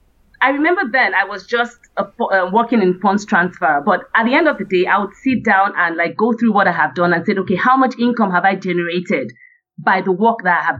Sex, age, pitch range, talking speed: female, 30-49, 195-245 Hz, 245 wpm